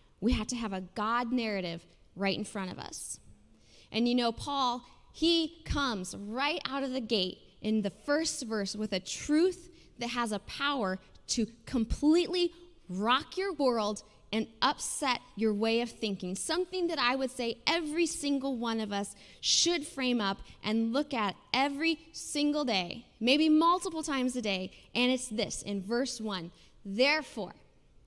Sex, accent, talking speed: female, American, 160 wpm